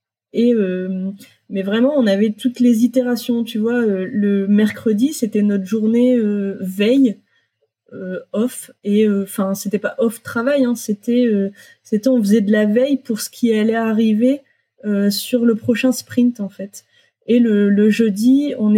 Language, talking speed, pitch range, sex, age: French, 160 wpm, 205-245 Hz, female, 20-39